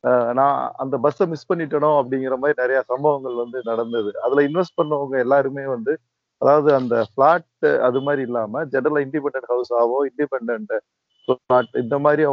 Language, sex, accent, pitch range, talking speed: Tamil, male, native, 120-145 Hz, 145 wpm